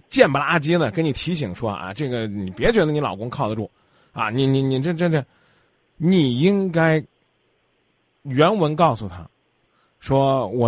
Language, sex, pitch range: Chinese, male, 120-170 Hz